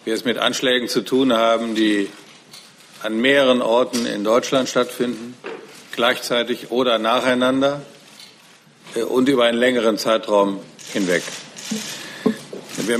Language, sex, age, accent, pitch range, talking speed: German, male, 50-69, German, 110-135 Hz, 110 wpm